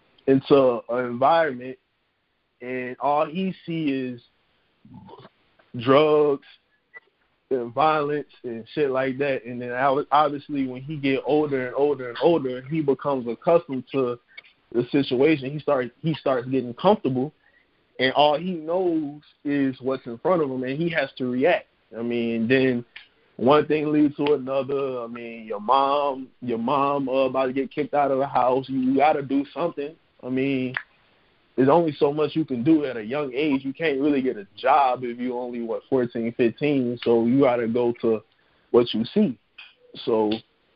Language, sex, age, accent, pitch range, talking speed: English, male, 20-39, American, 125-150 Hz, 165 wpm